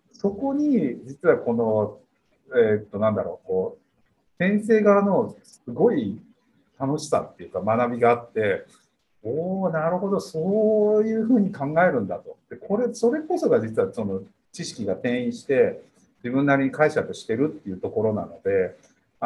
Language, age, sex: Japanese, 50-69, male